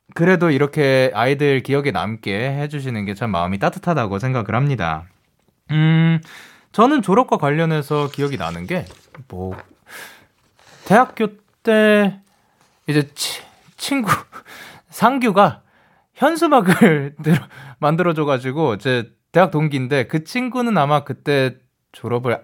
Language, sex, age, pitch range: Korean, male, 20-39, 110-175 Hz